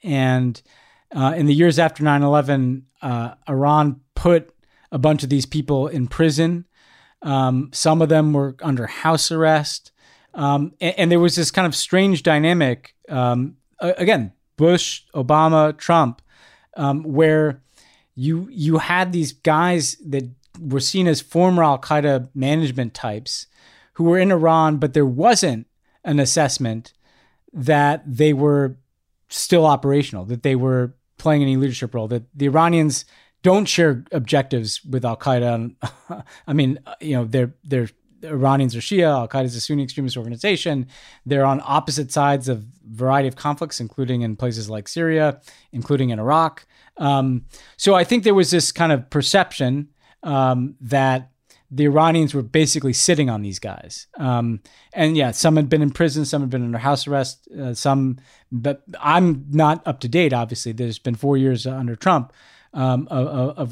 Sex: male